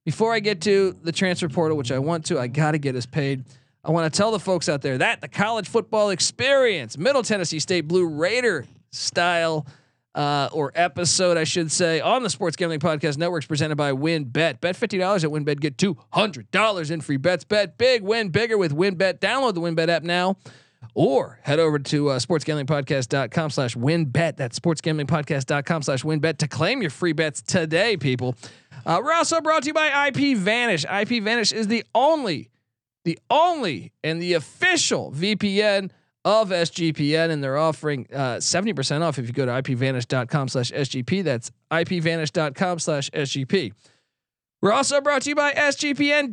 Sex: male